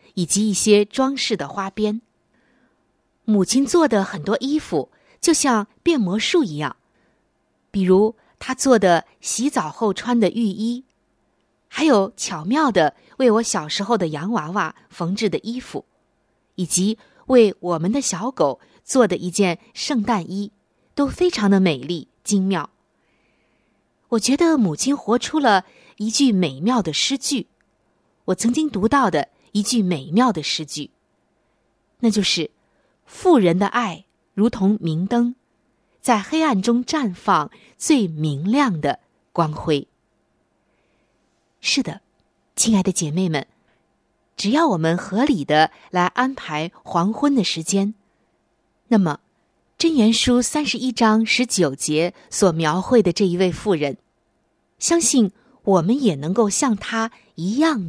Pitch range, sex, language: 180-245 Hz, female, Chinese